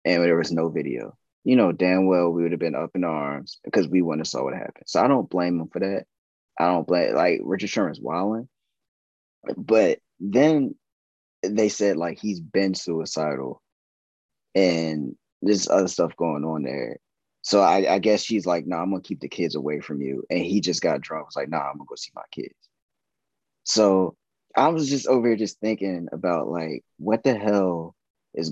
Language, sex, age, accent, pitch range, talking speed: English, male, 20-39, American, 85-110 Hz, 205 wpm